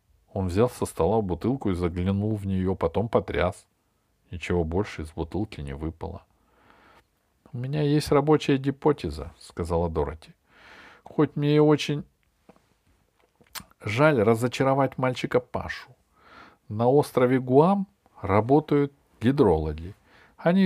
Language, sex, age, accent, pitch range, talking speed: Russian, male, 40-59, native, 100-150 Hz, 110 wpm